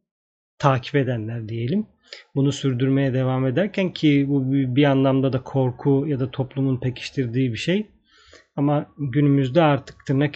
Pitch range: 135-160 Hz